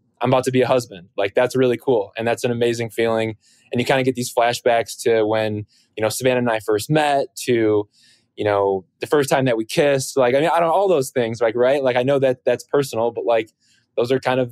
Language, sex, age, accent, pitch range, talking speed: English, male, 20-39, American, 110-130 Hz, 260 wpm